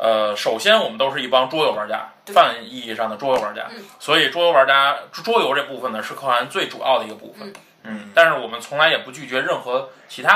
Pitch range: 115-165 Hz